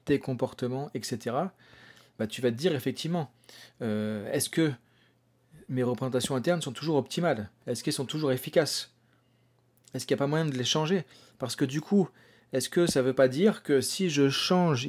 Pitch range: 125-155 Hz